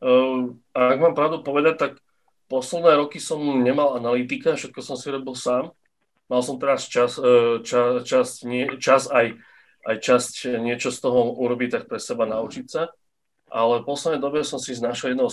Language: Slovak